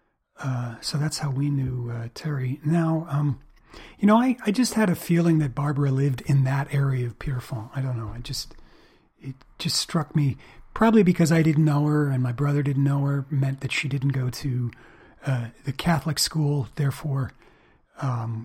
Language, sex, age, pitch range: English, male, 40-59, 130-155 Hz